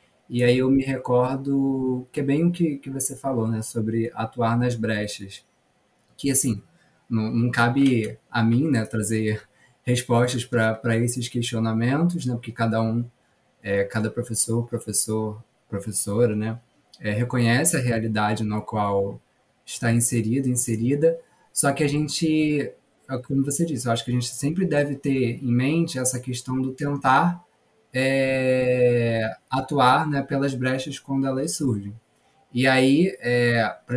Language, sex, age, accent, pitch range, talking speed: Portuguese, male, 20-39, Brazilian, 120-145 Hz, 140 wpm